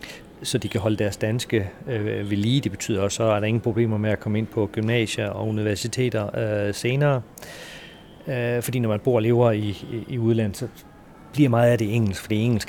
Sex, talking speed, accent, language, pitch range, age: male, 220 wpm, native, Danish, 105-120 Hz, 40-59